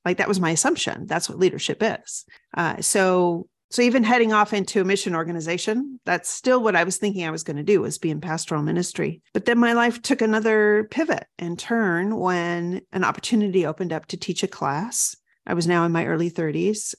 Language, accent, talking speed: English, American, 210 wpm